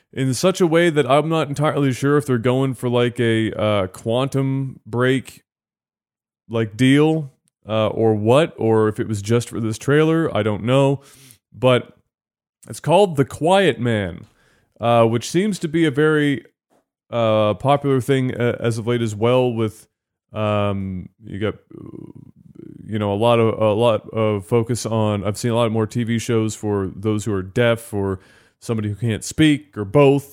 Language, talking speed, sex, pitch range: English, 175 wpm, male, 110-140 Hz